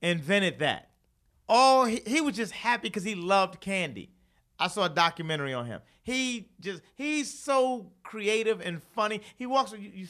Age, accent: 40-59, American